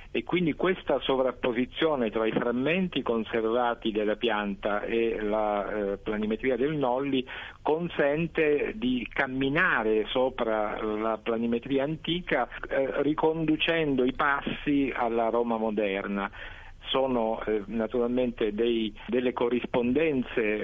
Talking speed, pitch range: 100 wpm, 110-140 Hz